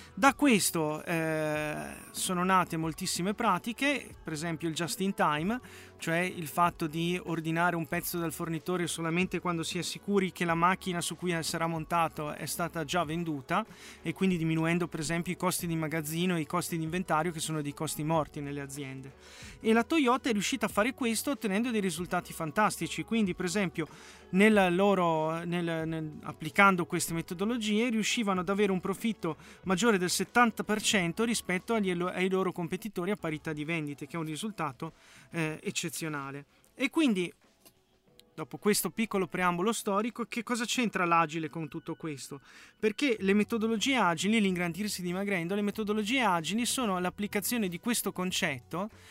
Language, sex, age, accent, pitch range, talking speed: Italian, male, 30-49, native, 165-205 Hz, 155 wpm